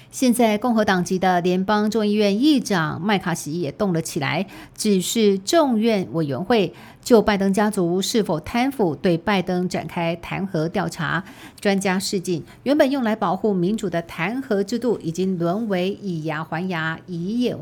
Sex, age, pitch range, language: female, 50-69, 165-210 Hz, Chinese